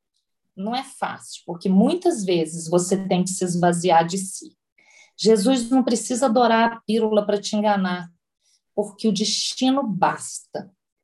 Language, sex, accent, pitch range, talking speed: Portuguese, female, Brazilian, 185-225 Hz, 140 wpm